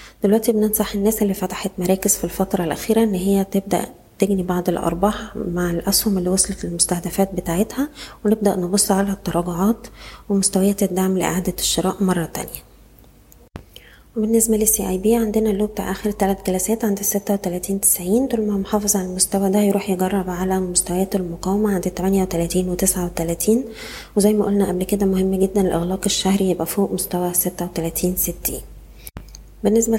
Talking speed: 150 wpm